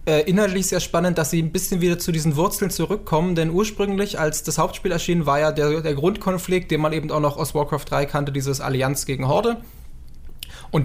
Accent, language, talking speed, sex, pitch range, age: German, German, 205 wpm, male, 150-175 Hz, 20-39